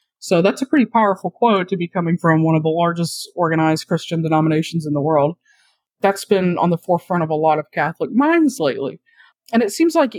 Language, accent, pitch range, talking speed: English, American, 160-220 Hz, 210 wpm